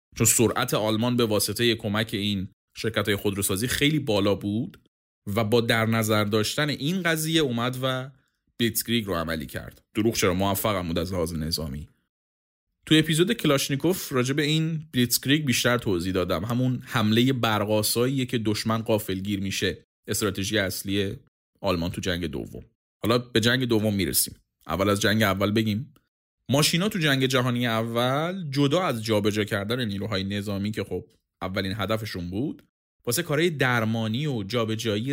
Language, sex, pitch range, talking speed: Persian, male, 100-135 Hz, 145 wpm